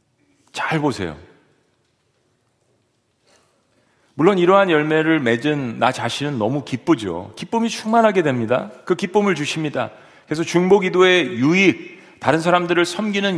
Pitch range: 150-200 Hz